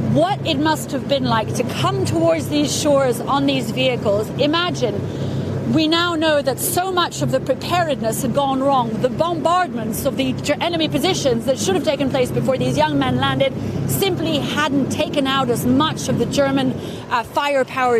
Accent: British